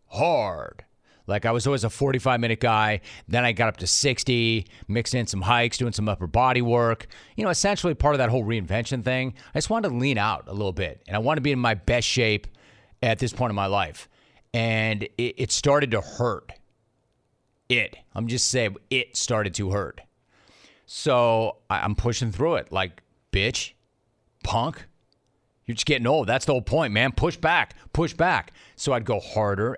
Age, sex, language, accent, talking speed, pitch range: 30-49, male, English, American, 195 wpm, 105-130 Hz